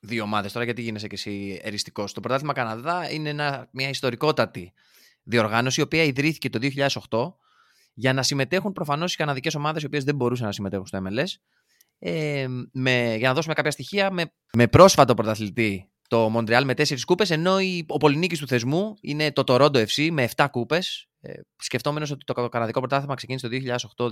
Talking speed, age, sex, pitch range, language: 180 wpm, 20-39, male, 110-150 Hz, Greek